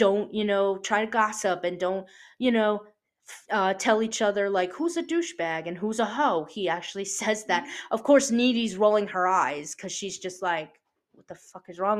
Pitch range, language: 185-235 Hz, English